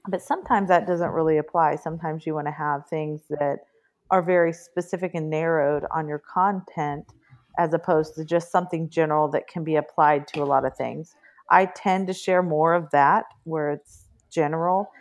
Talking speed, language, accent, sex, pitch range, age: 185 wpm, English, American, female, 150-170 Hz, 40-59